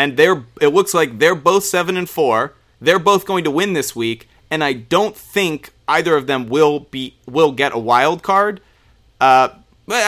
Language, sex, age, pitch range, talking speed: English, male, 30-49, 120-165 Hz, 190 wpm